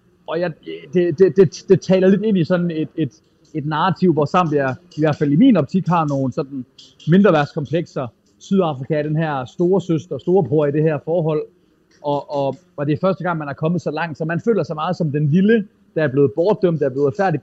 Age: 30-49